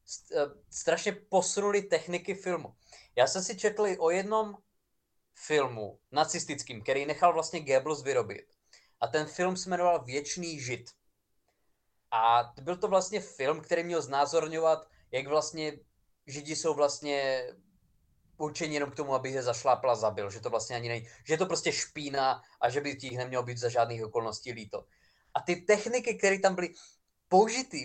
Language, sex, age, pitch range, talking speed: Czech, male, 20-39, 130-185 Hz, 155 wpm